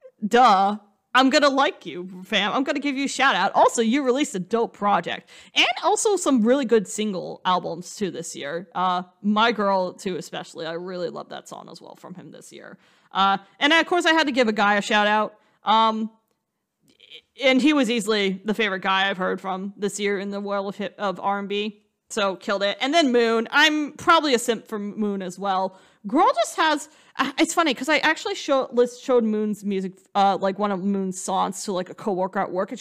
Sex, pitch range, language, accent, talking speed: female, 195-255 Hz, English, American, 210 wpm